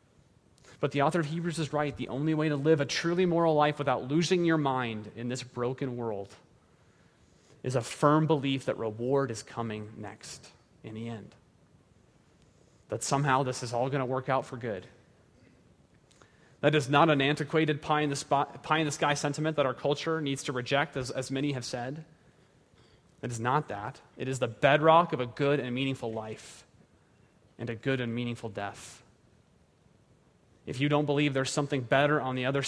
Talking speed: 175 wpm